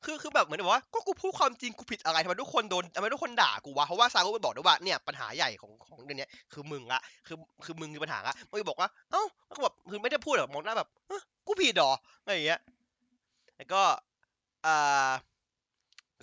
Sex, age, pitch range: male, 20-39, 150-245 Hz